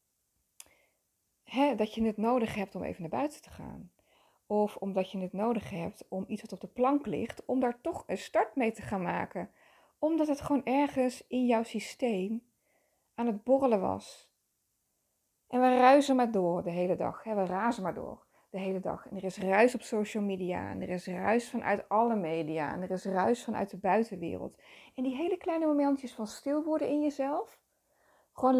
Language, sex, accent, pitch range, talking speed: Dutch, female, Dutch, 205-255 Hz, 190 wpm